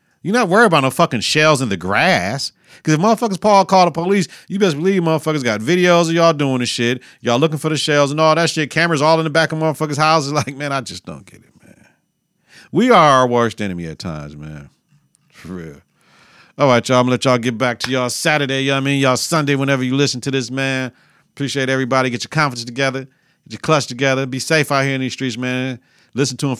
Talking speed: 250 wpm